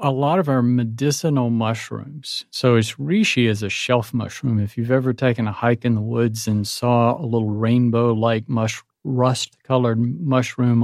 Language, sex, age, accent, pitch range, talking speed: English, male, 50-69, American, 115-135 Hz, 160 wpm